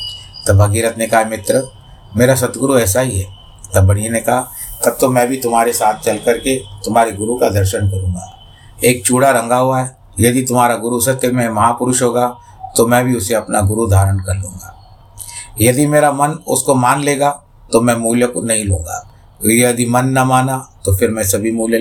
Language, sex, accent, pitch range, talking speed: Hindi, male, native, 105-125 Hz, 190 wpm